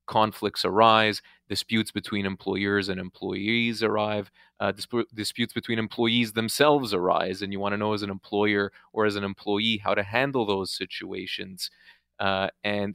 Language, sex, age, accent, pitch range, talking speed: English, male, 30-49, Canadian, 95-105 Hz, 160 wpm